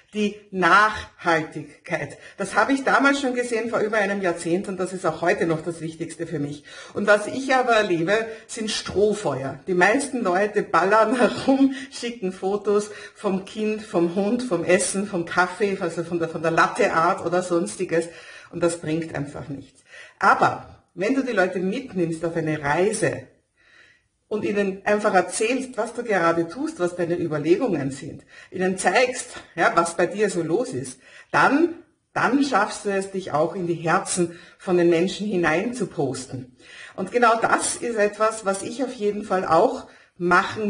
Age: 50-69